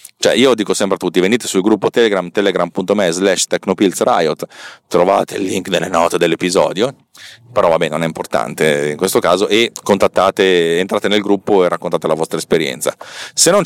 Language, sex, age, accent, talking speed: Italian, male, 40-59, native, 170 wpm